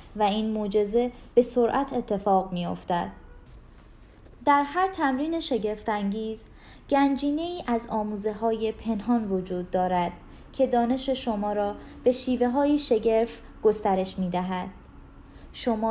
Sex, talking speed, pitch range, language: female, 105 wpm, 205-265 Hz, Persian